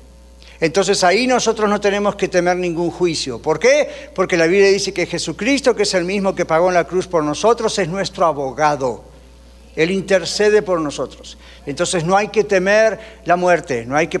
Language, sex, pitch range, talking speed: Spanish, male, 155-230 Hz, 190 wpm